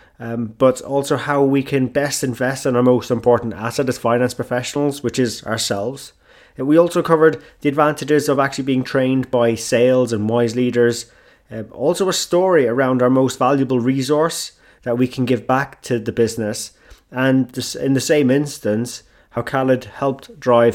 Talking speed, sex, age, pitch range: 170 wpm, male, 20-39, 115-140 Hz